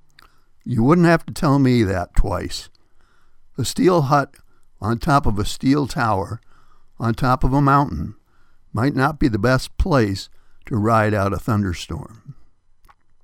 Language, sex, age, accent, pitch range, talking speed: English, male, 60-79, American, 105-140 Hz, 150 wpm